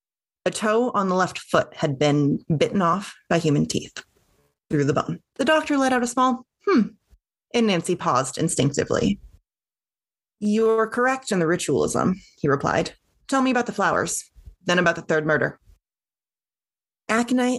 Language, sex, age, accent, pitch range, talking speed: English, female, 30-49, American, 150-195 Hz, 155 wpm